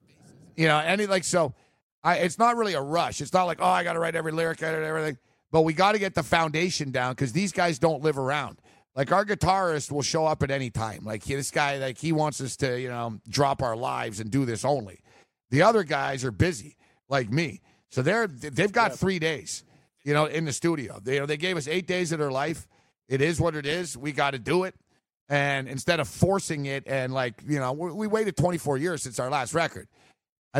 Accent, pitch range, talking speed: American, 130-170 Hz, 235 wpm